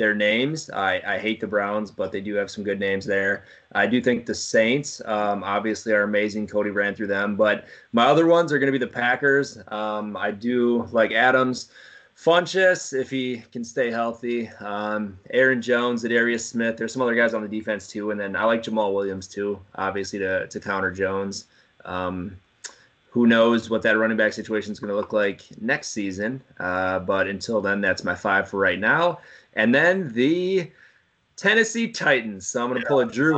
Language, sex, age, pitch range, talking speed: English, male, 20-39, 105-125 Hz, 200 wpm